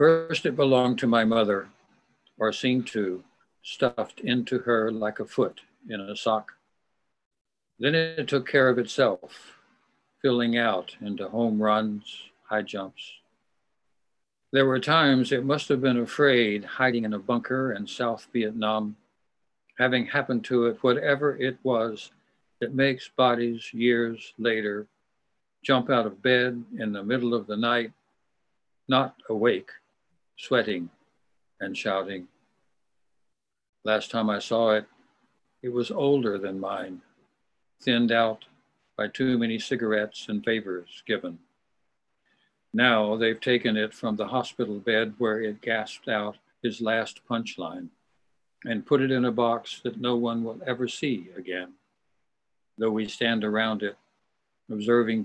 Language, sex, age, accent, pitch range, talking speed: English, male, 60-79, American, 110-125 Hz, 135 wpm